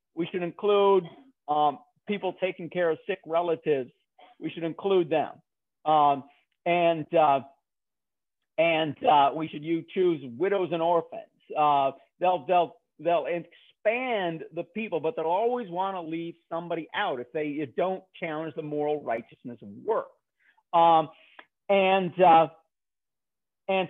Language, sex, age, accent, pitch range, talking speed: English, male, 50-69, American, 165-235 Hz, 135 wpm